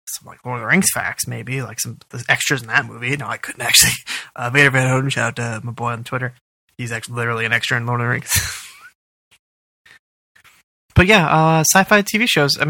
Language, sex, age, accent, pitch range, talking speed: English, male, 20-39, American, 125-170 Hz, 220 wpm